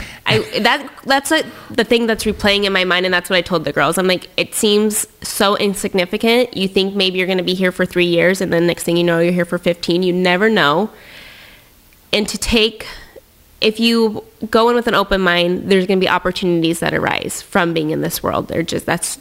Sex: female